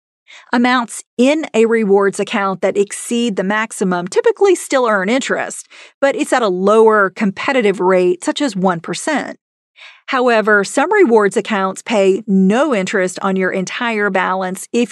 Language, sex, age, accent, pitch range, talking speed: English, female, 40-59, American, 190-235 Hz, 140 wpm